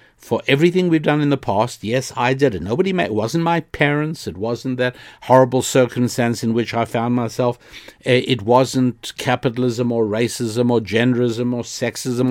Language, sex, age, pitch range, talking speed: English, male, 60-79, 105-130 Hz, 165 wpm